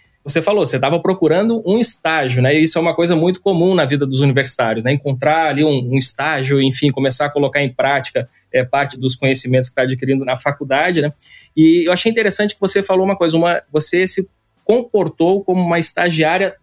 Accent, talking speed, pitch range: Brazilian, 195 wpm, 150-205 Hz